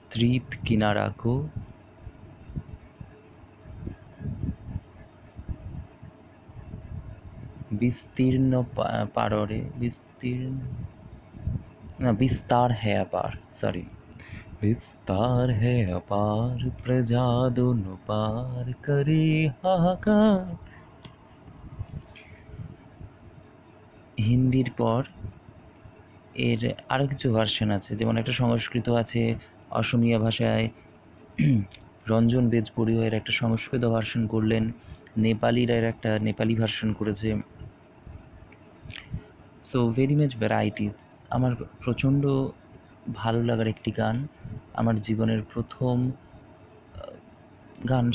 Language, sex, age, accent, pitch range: Bengali, male, 30-49, native, 105-125 Hz